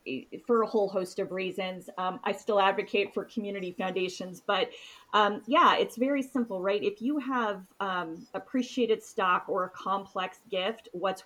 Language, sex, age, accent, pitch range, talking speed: English, female, 30-49, American, 190-220 Hz, 165 wpm